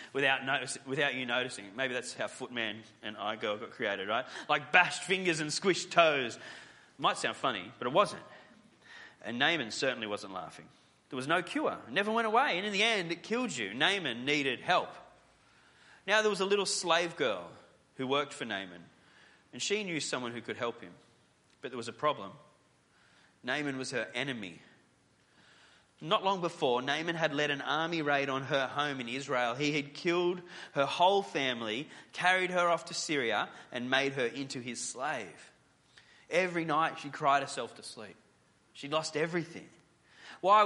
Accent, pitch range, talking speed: Australian, 130-180 Hz, 175 wpm